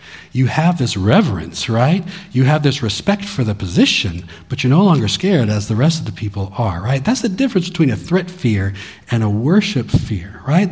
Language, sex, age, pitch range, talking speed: English, male, 40-59, 105-145 Hz, 205 wpm